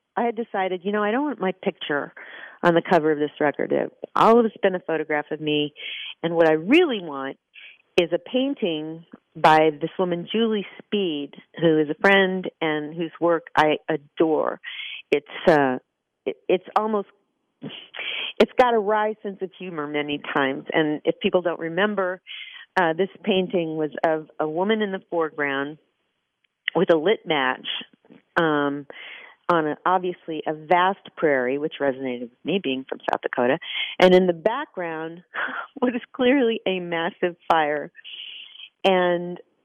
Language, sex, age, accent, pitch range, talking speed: English, female, 40-59, American, 155-205 Hz, 160 wpm